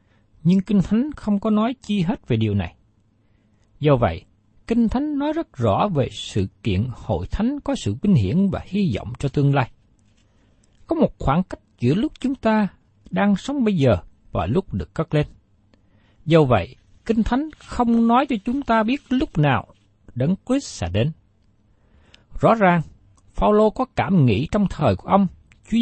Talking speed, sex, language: 180 wpm, male, Vietnamese